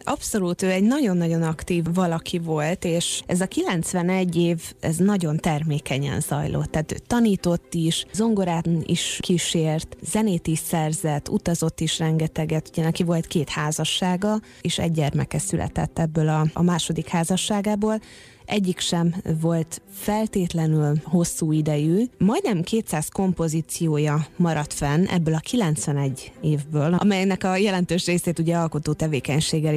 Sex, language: female, Hungarian